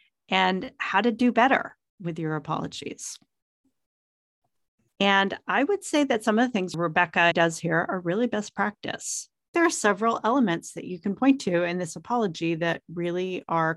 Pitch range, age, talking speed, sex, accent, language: 165-225 Hz, 40-59, 170 wpm, female, American, English